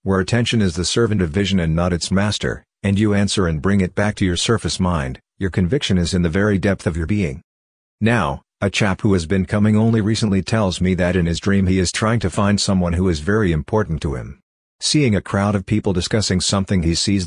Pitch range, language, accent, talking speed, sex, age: 90-105 Hz, English, American, 235 wpm, male, 50-69